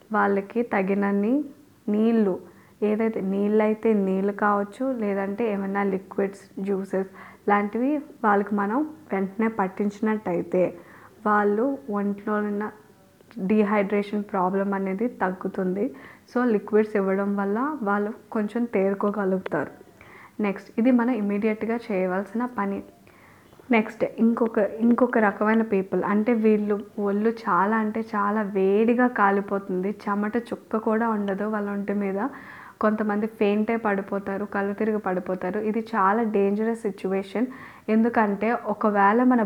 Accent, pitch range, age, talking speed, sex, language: Indian, 200-220 Hz, 20-39, 95 wpm, female, English